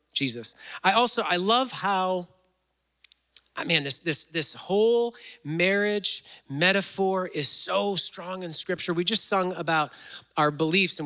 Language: English